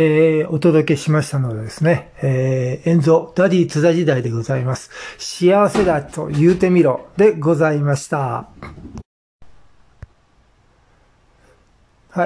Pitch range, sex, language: 135-170 Hz, male, Japanese